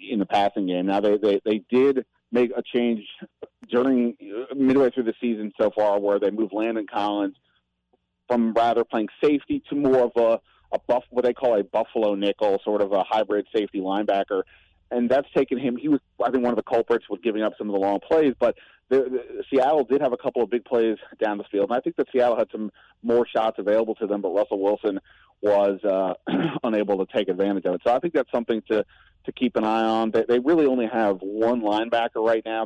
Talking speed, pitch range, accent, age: 220 wpm, 100-120 Hz, American, 30-49